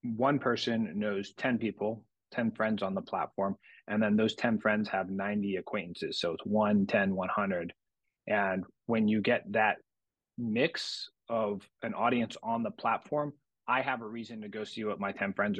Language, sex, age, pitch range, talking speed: English, male, 30-49, 105-125 Hz, 175 wpm